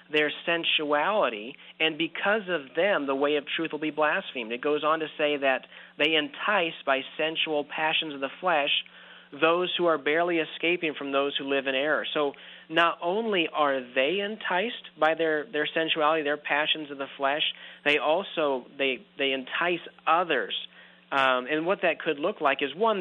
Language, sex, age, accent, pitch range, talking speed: English, male, 40-59, American, 135-160 Hz, 175 wpm